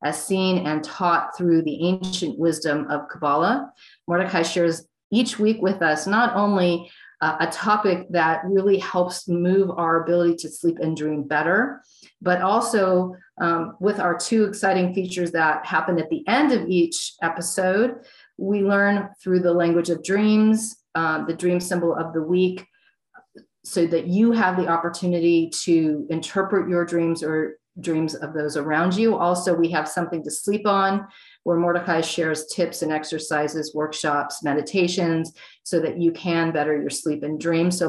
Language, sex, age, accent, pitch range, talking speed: English, female, 40-59, American, 160-190 Hz, 160 wpm